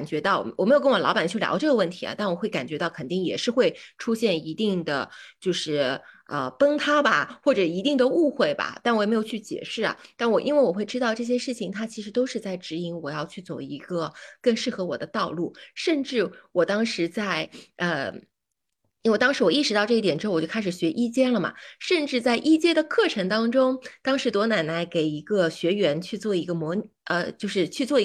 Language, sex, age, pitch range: Chinese, female, 20-39, 175-255 Hz